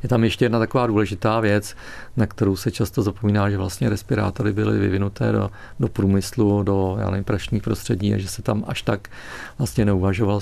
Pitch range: 100-115 Hz